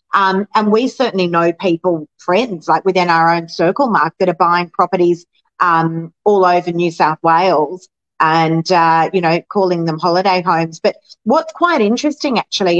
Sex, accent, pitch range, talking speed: female, Australian, 165-205 Hz, 170 wpm